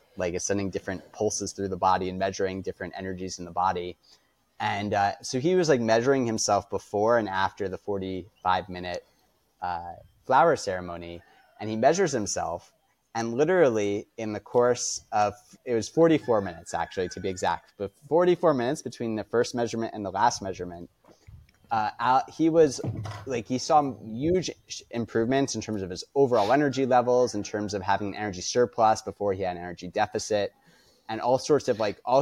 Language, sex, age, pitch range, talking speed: English, male, 30-49, 95-125 Hz, 170 wpm